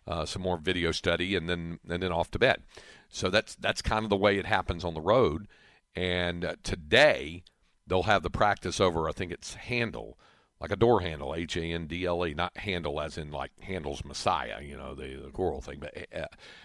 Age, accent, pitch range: 50-69, American, 85-110 Hz